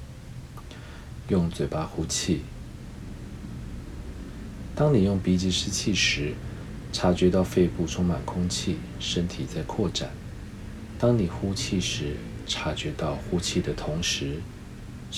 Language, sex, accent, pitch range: Chinese, male, native, 80-105 Hz